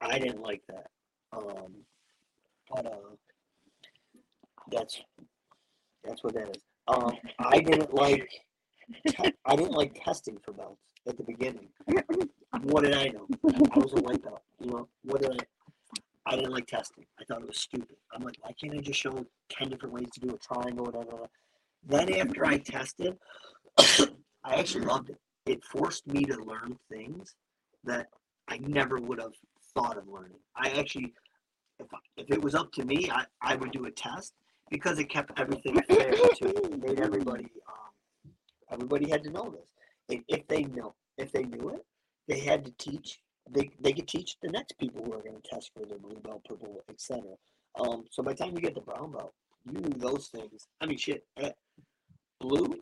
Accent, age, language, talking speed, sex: American, 40-59, English, 185 wpm, male